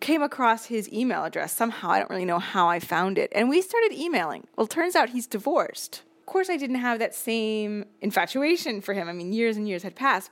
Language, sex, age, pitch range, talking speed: English, female, 20-39, 195-275 Hz, 240 wpm